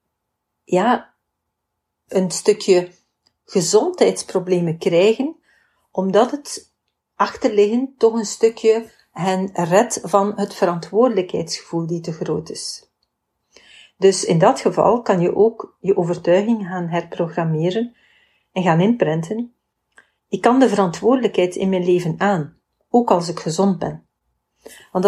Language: Dutch